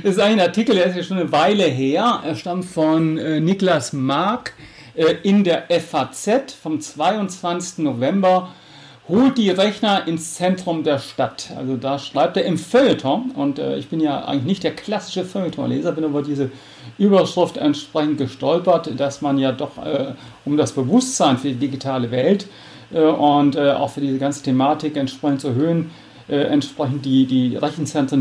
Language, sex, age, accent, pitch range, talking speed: English, male, 40-59, German, 140-170 Hz, 160 wpm